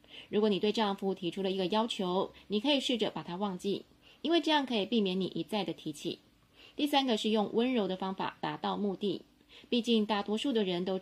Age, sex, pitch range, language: 20-39, female, 185-225 Hz, Chinese